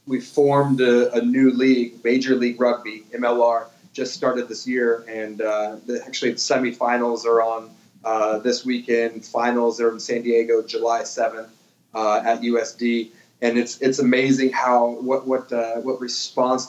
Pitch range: 115-125 Hz